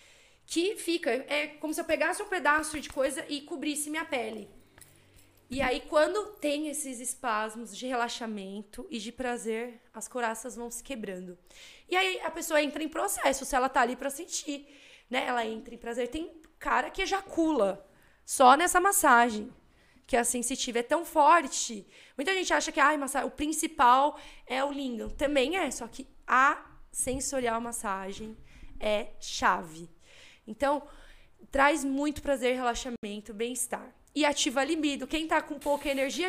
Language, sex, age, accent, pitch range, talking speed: Portuguese, female, 20-39, Brazilian, 235-295 Hz, 160 wpm